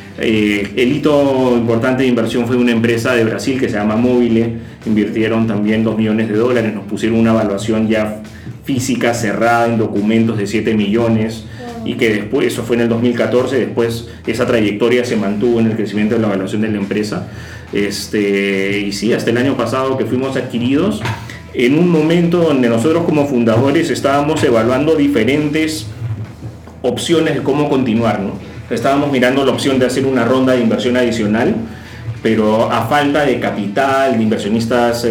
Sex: male